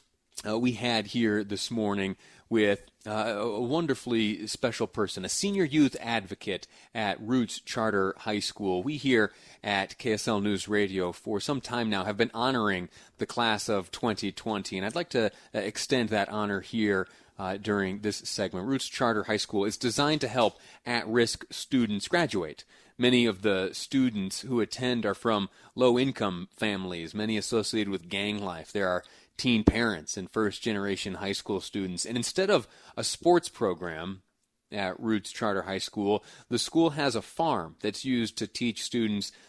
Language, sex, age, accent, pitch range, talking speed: English, male, 30-49, American, 100-120 Hz, 165 wpm